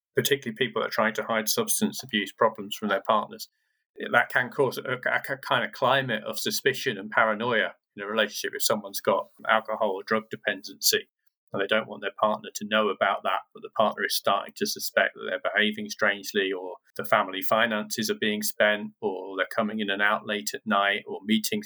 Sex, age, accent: male, 40-59, British